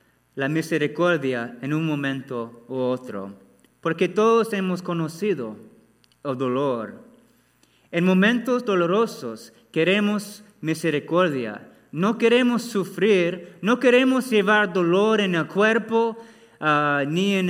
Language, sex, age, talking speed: Spanish, male, 30-49, 105 wpm